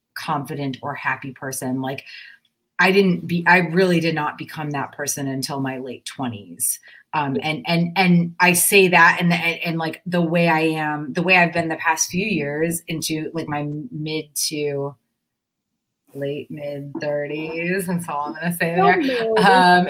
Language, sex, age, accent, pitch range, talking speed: English, female, 30-49, American, 150-185 Hz, 175 wpm